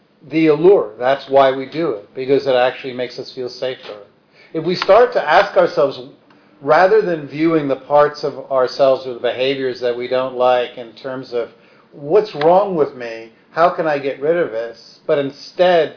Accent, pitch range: American, 125-150 Hz